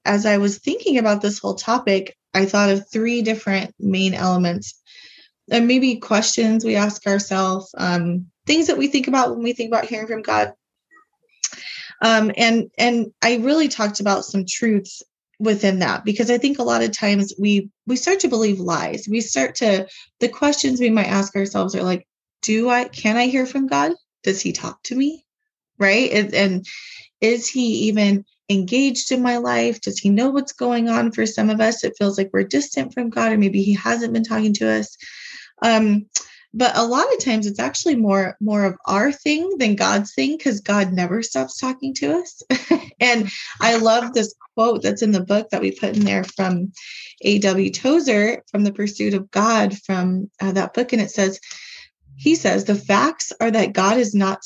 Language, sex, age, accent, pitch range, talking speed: English, female, 20-39, American, 195-240 Hz, 195 wpm